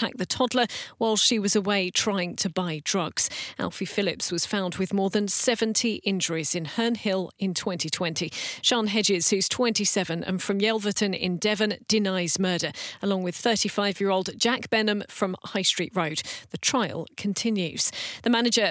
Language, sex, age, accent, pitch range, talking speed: English, female, 40-59, British, 190-230 Hz, 160 wpm